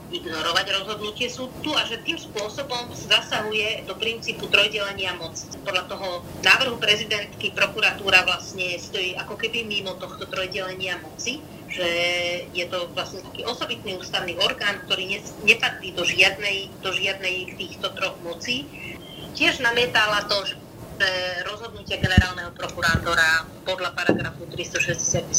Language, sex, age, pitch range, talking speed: Slovak, female, 30-49, 175-205 Hz, 120 wpm